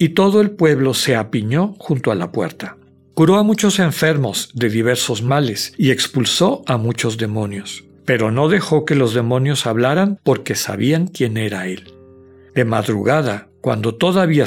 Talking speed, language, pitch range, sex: 160 wpm, Spanish, 115-150 Hz, male